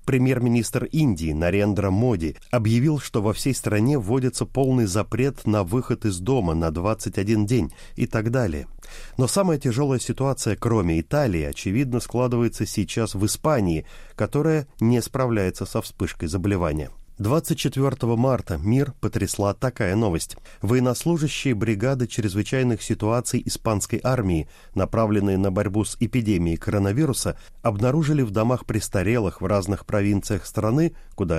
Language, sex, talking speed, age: Russian, male, 125 wpm, 30-49